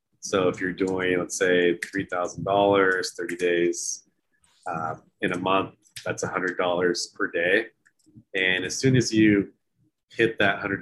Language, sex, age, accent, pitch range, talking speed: English, male, 30-49, American, 85-100 Hz, 155 wpm